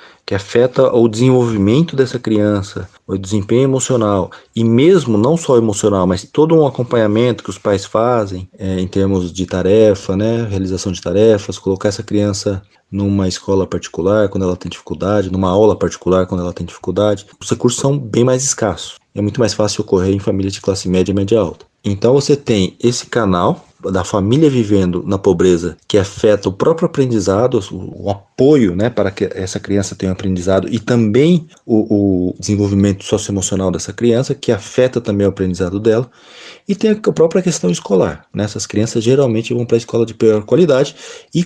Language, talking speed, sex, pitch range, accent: Portuguese, 180 wpm, male, 95-120 Hz, Brazilian